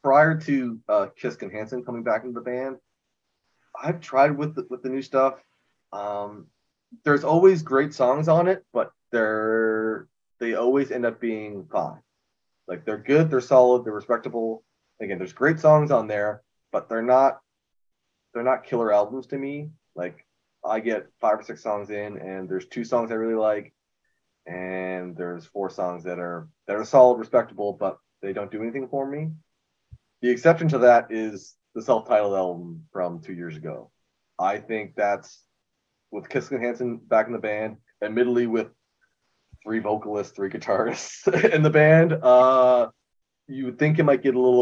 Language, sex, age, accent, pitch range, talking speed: English, male, 20-39, American, 100-130 Hz, 175 wpm